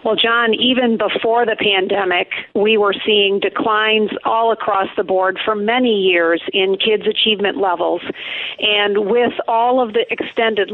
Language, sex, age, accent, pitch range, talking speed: English, female, 50-69, American, 205-245 Hz, 150 wpm